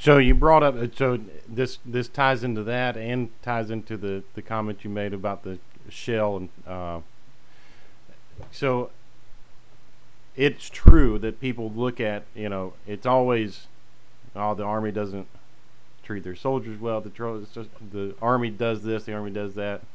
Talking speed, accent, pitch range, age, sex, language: 155 wpm, American, 100-125 Hz, 40-59, male, English